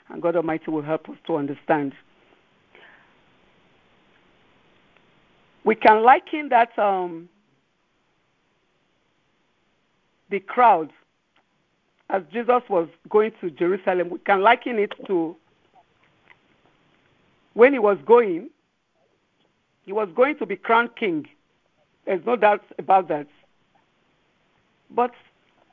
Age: 50-69